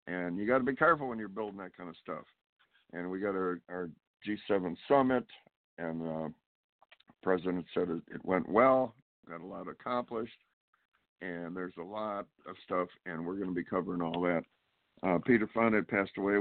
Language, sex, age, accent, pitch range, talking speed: English, male, 60-79, American, 85-105 Hz, 185 wpm